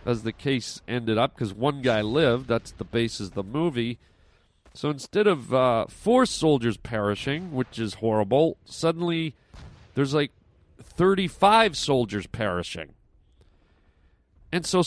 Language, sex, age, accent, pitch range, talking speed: English, male, 40-59, American, 115-160 Hz, 135 wpm